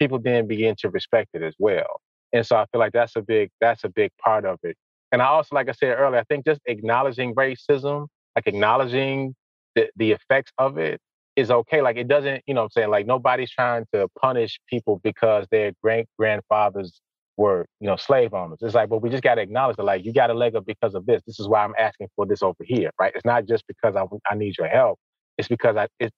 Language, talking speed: English, 245 wpm